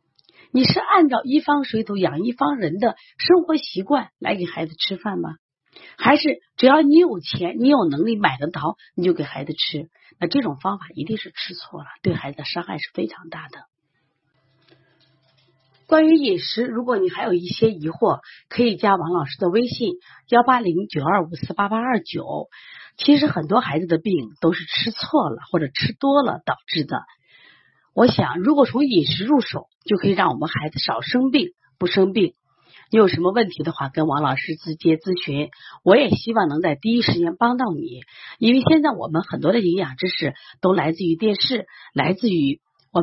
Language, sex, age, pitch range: Chinese, female, 30-49, 165-260 Hz